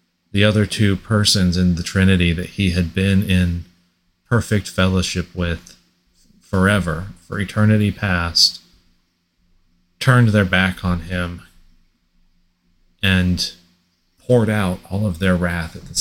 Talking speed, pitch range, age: 125 wpm, 85-95 Hz, 40-59